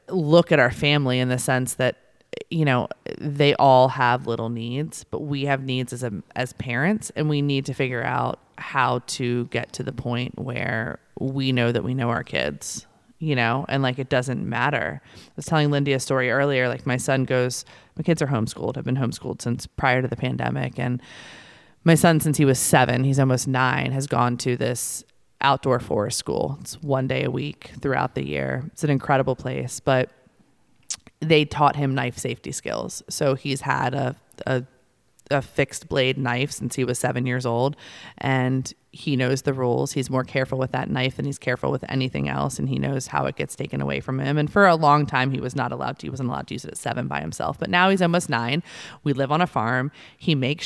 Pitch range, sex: 125-150 Hz, female